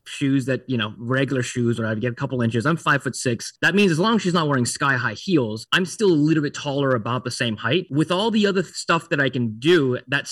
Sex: male